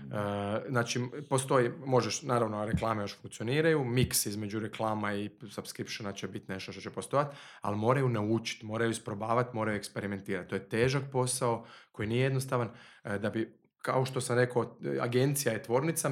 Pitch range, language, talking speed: 110-135 Hz, Croatian, 160 wpm